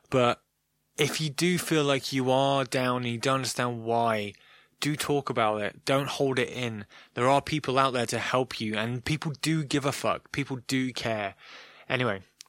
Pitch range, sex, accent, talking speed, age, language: 115-160 Hz, male, British, 190 wpm, 20-39, English